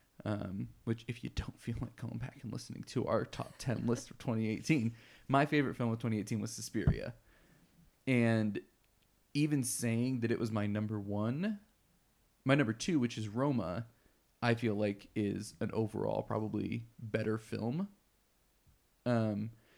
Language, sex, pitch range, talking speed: English, male, 105-115 Hz, 150 wpm